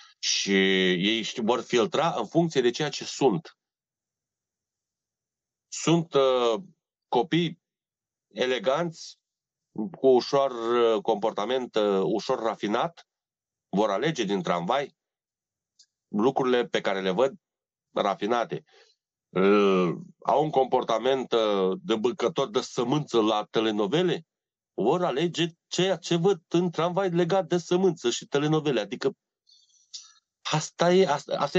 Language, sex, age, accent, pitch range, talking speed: Romanian, male, 30-49, native, 125-175 Hz, 105 wpm